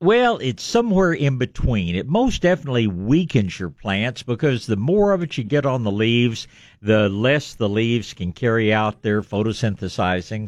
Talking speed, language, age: 170 wpm, English, 50-69